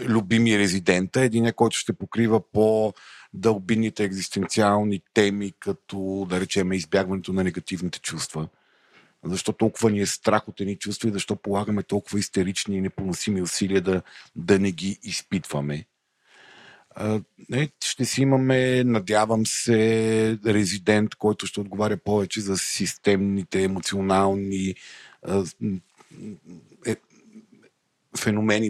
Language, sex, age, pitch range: Bulgarian, male, 50-69, 95-120 Hz